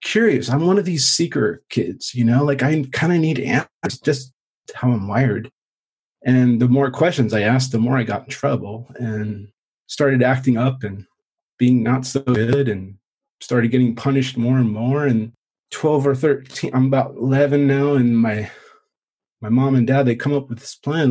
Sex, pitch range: male, 120-145 Hz